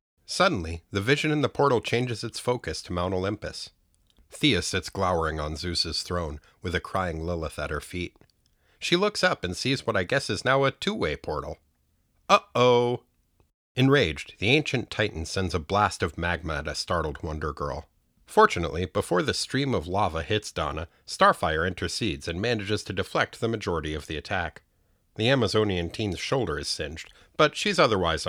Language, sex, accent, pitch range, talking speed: English, male, American, 85-145 Hz, 175 wpm